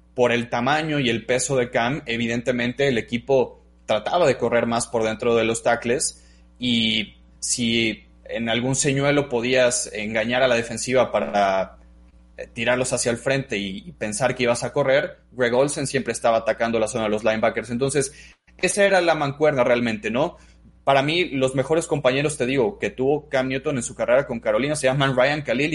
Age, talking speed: 20-39, 185 wpm